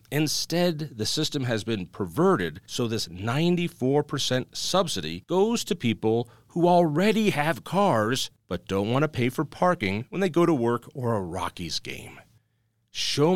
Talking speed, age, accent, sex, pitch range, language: 155 wpm, 40-59, American, male, 110-155 Hz, English